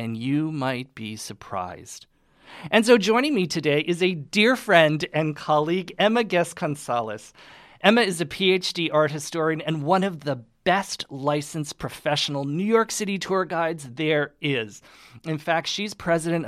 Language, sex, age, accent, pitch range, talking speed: English, male, 40-59, American, 140-185 Hz, 155 wpm